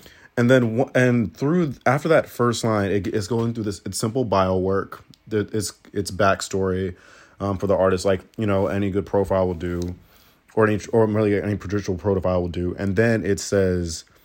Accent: American